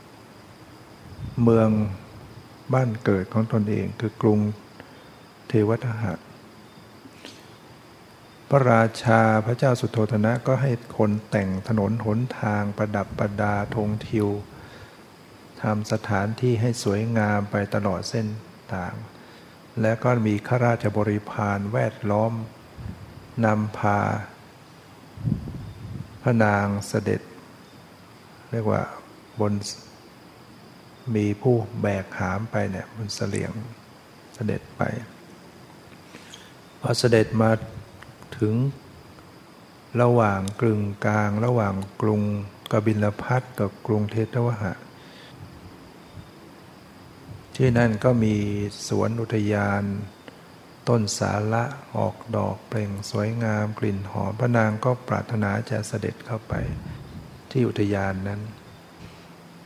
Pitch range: 105-115 Hz